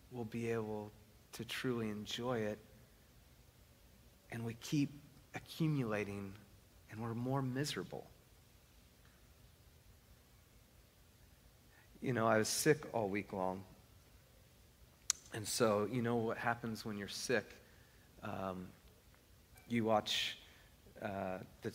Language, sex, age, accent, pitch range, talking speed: English, male, 40-59, American, 105-125 Hz, 100 wpm